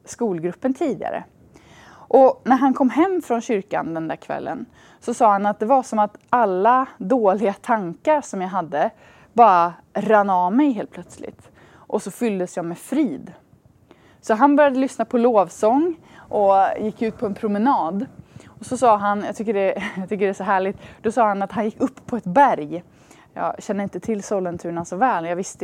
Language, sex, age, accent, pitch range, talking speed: Swedish, female, 20-39, native, 180-245 Hz, 185 wpm